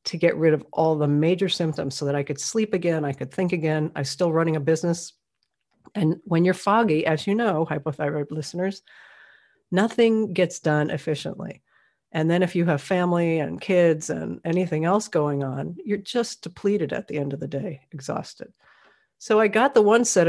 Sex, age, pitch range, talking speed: female, 50-69, 150-185 Hz, 190 wpm